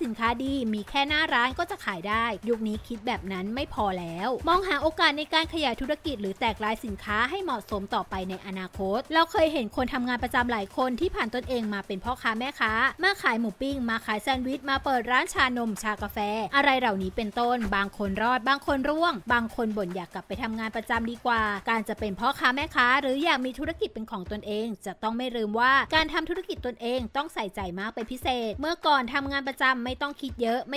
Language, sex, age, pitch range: English, female, 20-39, 220-285 Hz